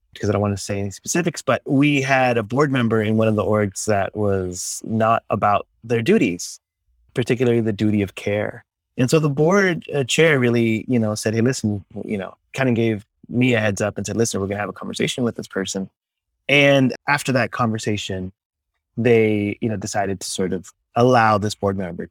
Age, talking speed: 20-39, 210 wpm